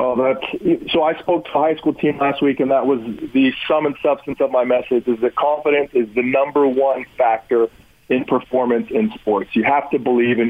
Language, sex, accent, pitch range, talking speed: English, male, American, 130-170 Hz, 225 wpm